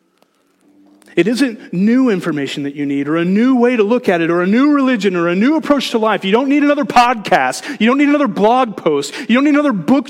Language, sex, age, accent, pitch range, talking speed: English, male, 30-49, American, 180-260 Hz, 245 wpm